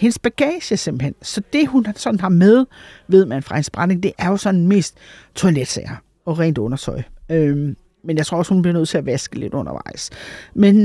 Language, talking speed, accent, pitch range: Danish, 200 wpm, native, 150-190 Hz